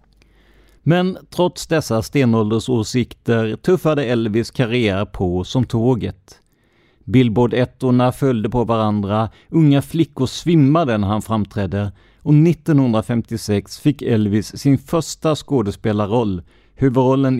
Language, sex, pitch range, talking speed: Swedish, male, 105-140 Hz, 95 wpm